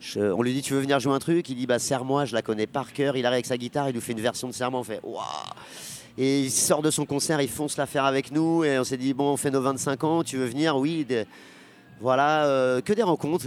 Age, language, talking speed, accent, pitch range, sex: 30-49, French, 325 wpm, French, 130-155 Hz, male